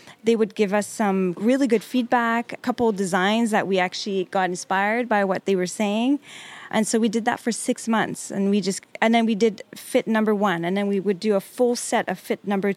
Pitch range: 185-230 Hz